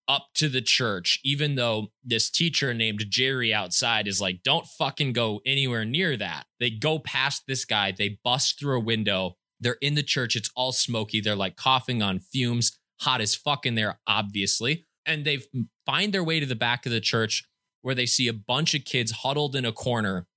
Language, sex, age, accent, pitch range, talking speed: English, male, 20-39, American, 115-150 Hz, 205 wpm